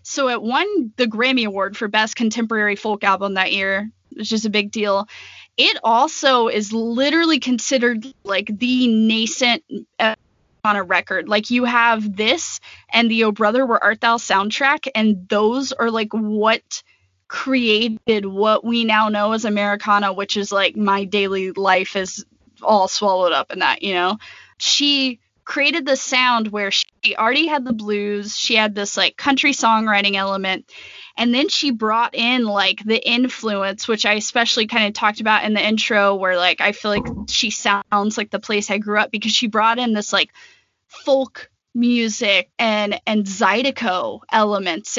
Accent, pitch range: American, 200-235 Hz